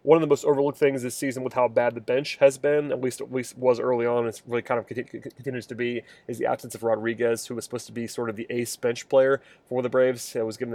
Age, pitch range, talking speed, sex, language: 20-39, 115-130 Hz, 290 wpm, male, English